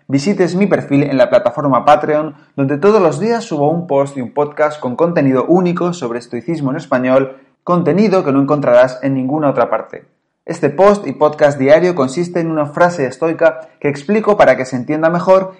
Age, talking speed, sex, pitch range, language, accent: 30-49, 190 wpm, male, 135-170 Hz, Spanish, Spanish